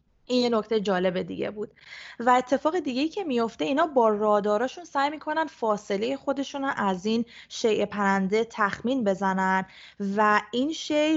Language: Persian